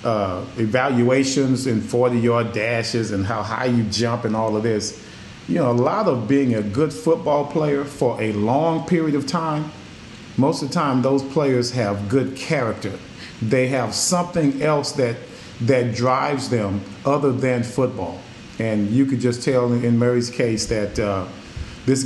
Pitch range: 110-135 Hz